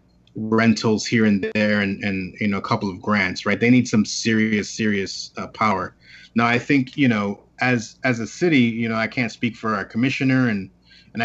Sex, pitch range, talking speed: male, 100-120 Hz, 210 wpm